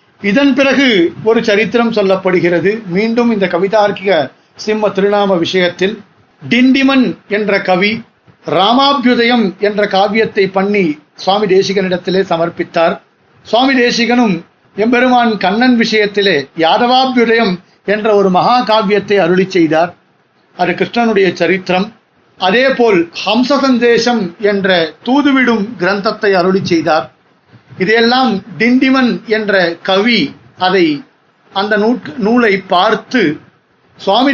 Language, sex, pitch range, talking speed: Tamil, male, 190-240 Hz, 90 wpm